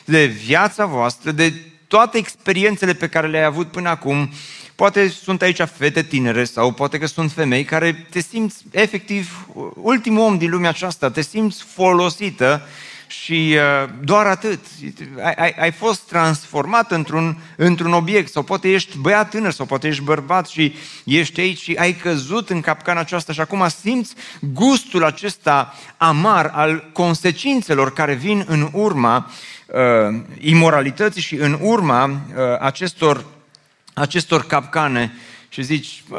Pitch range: 135-180 Hz